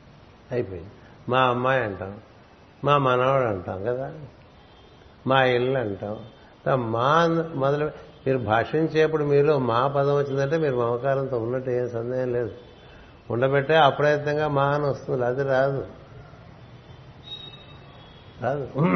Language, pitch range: Telugu, 120-140 Hz